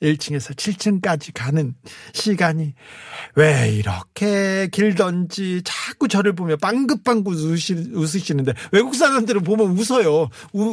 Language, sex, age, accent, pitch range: Korean, male, 40-59, native, 145-210 Hz